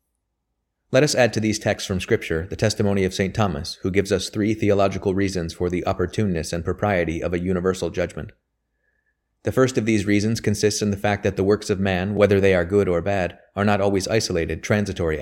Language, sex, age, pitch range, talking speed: English, male, 30-49, 90-100 Hz, 210 wpm